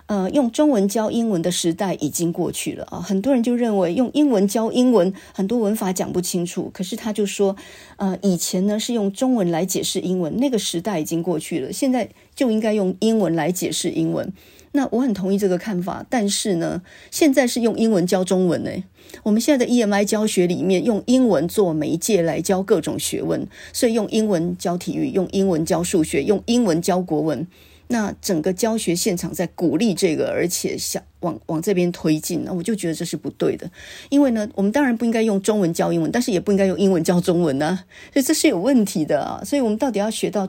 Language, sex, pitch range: Chinese, female, 175-225 Hz